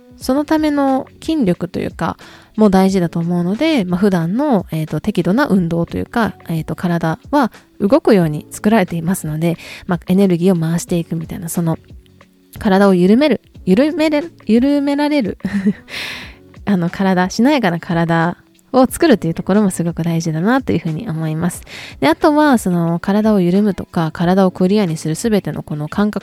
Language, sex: Japanese, female